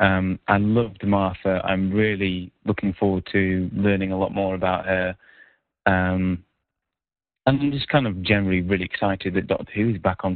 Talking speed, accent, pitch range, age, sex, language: 170 wpm, British, 95-105 Hz, 30-49, male, English